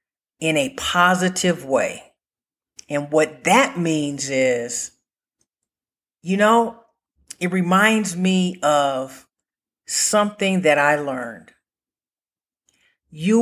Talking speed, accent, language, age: 90 wpm, American, English, 50-69